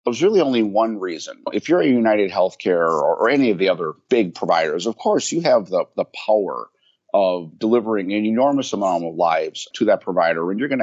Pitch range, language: 95-115 Hz, English